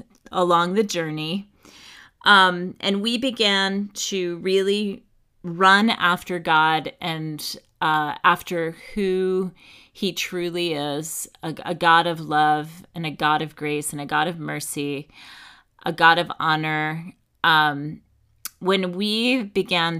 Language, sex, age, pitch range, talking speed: English, female, 30-49, 155-185 Hz, 125 wpm